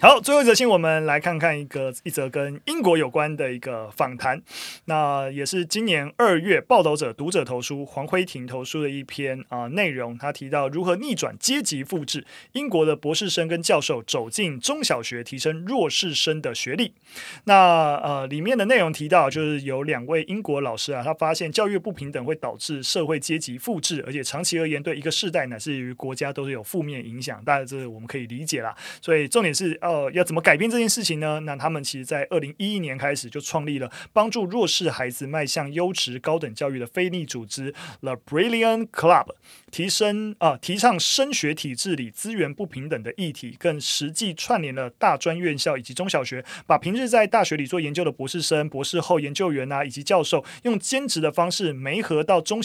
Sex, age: male, 30-49